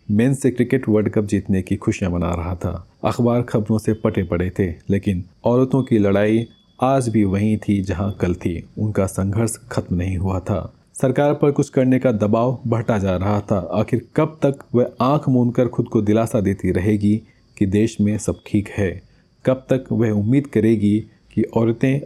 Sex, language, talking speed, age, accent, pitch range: male, Hindi, 185 wpm, 30-49, native, 100-125 Hz